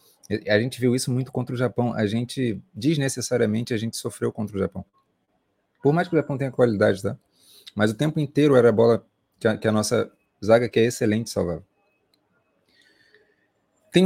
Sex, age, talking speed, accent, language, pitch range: male, 30-49, 180 wpm, Brazilian, Portuguese, 110-150 Hz